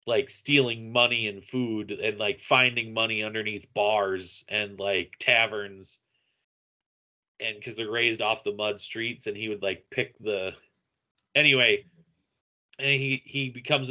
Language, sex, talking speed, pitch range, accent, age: English, male, 140 wpm, 105-140 Hz, American, 30-49